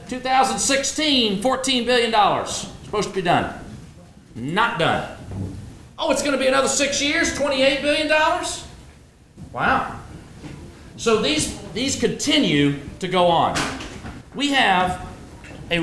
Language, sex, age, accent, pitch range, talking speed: English, male, 40-59, American, 195-255 Hz, 120 wpm